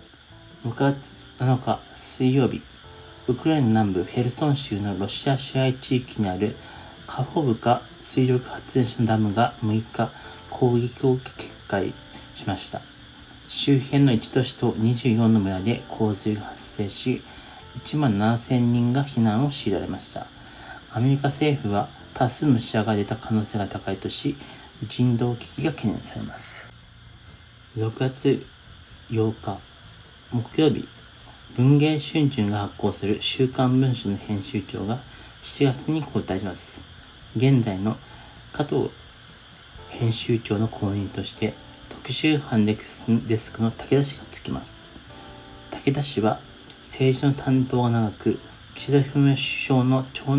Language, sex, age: Japanese, male, 40-59